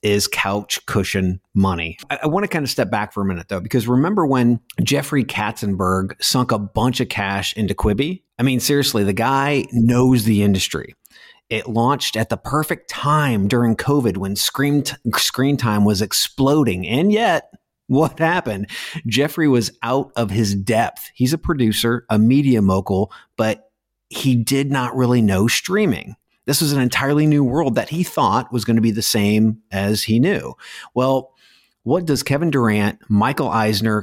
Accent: American